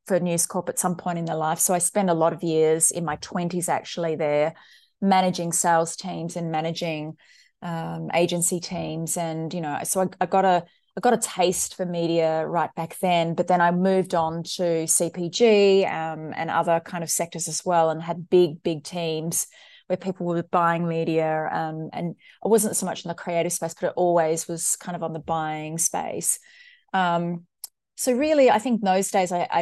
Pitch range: 165-185 Hz